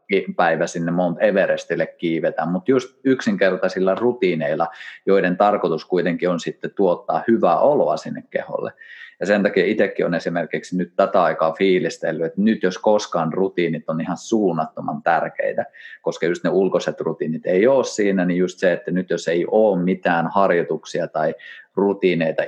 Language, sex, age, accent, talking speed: Finnish, male, 30-49, native, 155 wpm